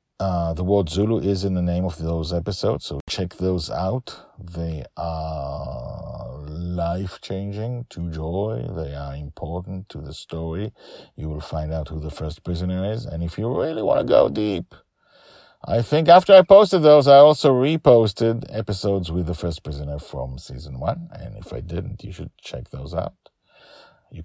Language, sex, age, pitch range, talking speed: English, male, 50-69, 80-110 Hz, 175 wpm